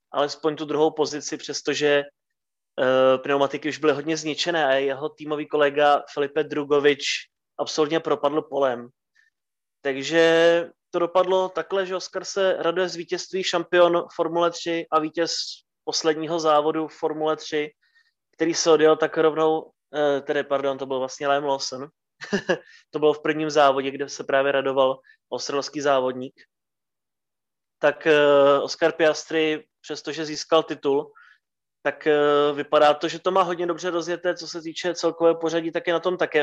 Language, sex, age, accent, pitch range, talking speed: Czech, male, 20-39, native, 145-170 Hz, 150 wpm